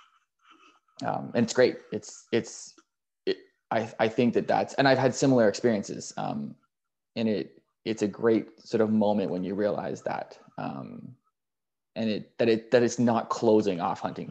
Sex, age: male, 20-39